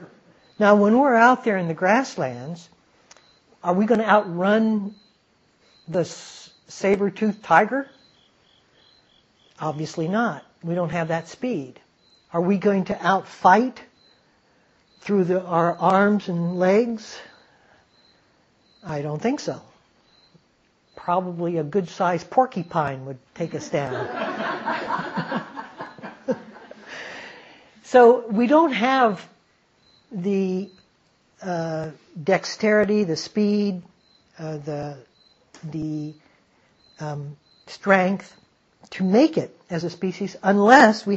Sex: male